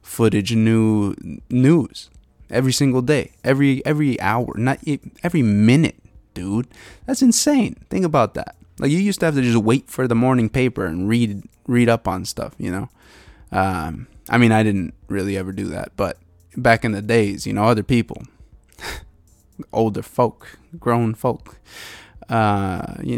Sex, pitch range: male, 100-130 Hz